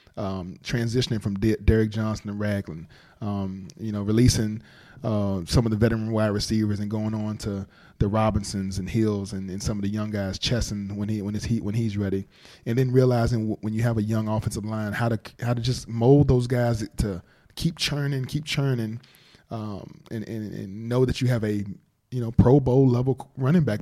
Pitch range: 105-125 Hz